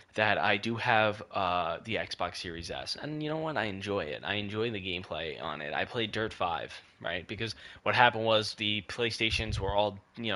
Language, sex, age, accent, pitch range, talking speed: English, male, 10-29, American, 100-125 Hz, 210 wpm